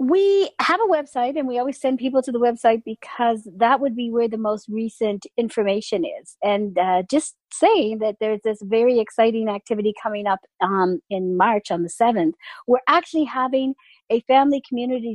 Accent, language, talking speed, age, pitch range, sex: American, English, 180 wpm, 50-69, 205-260 Hz, female